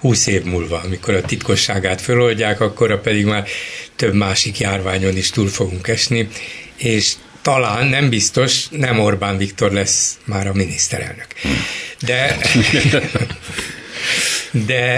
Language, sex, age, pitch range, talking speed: Hungarian, male, 60-79, 105-125 Hz, 120 wpm